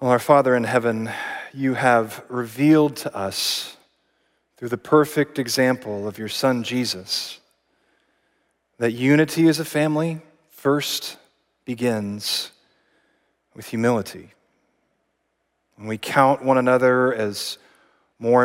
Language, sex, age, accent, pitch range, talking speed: English, male, 40-59, American, 115-140 Hz, 110 wpm